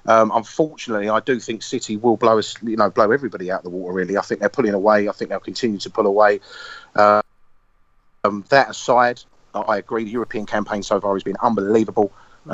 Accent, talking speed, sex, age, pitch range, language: British, 210 wpm, male, 30-49, 105-125 Hz, English